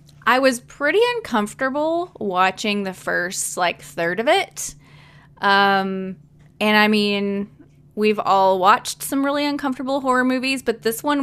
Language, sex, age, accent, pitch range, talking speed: English, female, 20-39, American, 175-225 Hz, 140 wpm